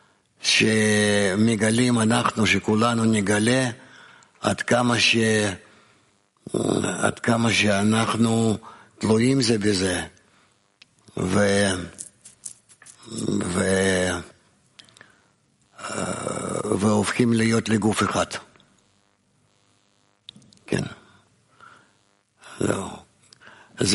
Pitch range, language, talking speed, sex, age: 100-115 Hz, English, 50 wpm, male, 60-79